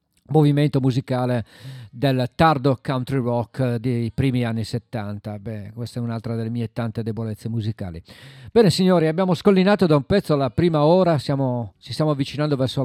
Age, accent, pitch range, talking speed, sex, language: 50-69, native, 120-145 Hz, 155 wpm, male, Italian